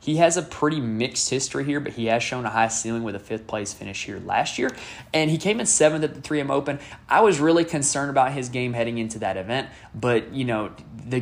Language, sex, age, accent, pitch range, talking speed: English, male, 20-39, American, 110-140 Hz, 245 wpm